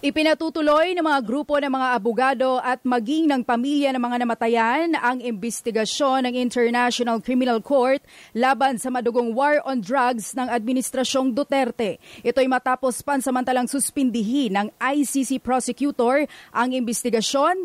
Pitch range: 245-290 Hz